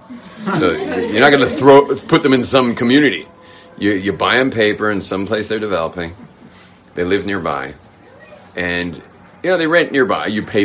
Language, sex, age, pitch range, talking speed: English, male, 40-59, 95-115 Hz, 175 wpm